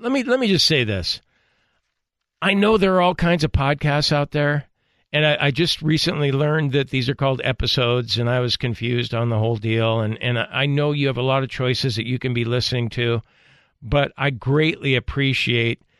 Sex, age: male, 50-69